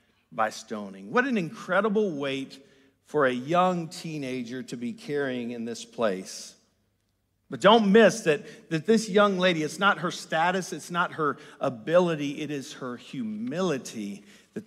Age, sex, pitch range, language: 50-69, male, 130-205 Hz, English